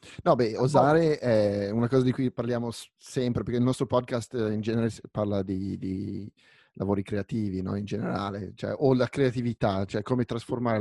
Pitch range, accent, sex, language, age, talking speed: 110-130 Hz, native, male, Italian, 30-49, 170 wpm